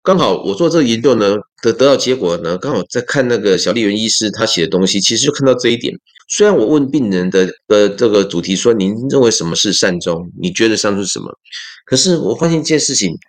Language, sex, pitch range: Chinese, male, 100-140 Hz